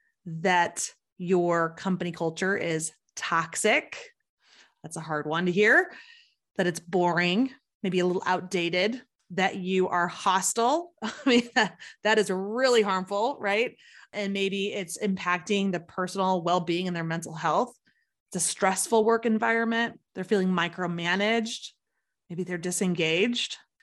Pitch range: 175-220 Hz